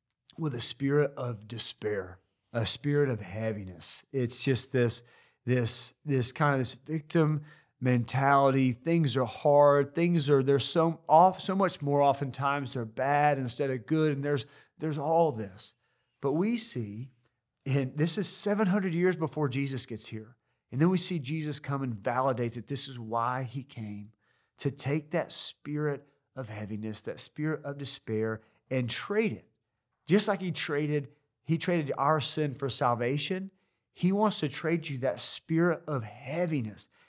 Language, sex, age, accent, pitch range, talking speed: English, male, 40-59, American, 115-150 Hz, 160 wpm